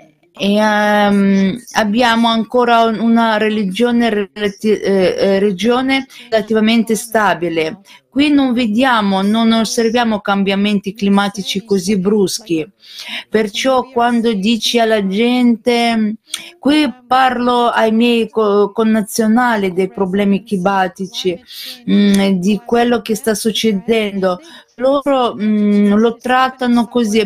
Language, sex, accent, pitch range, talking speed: Italian, female, native, 205-245 Hz, 95 wpm